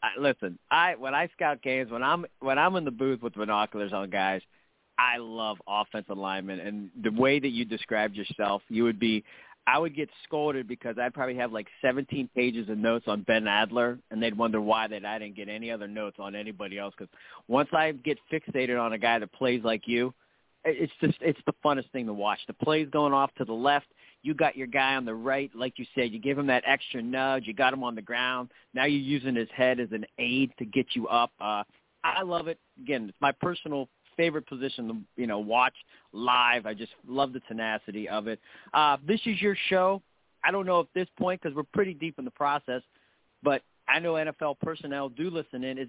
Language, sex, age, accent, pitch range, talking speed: English, male, 30-49, American, 115-150 Hz, 225 wpm